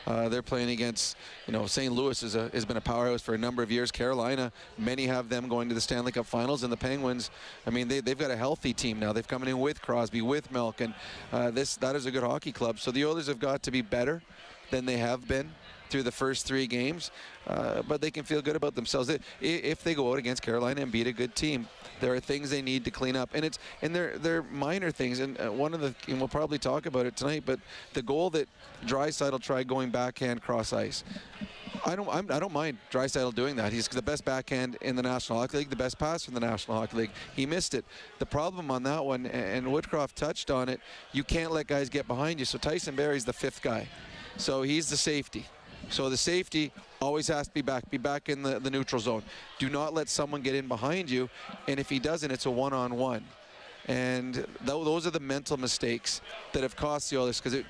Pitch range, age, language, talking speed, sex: 125-145 Hz, 30-49, English, 240 wpm, male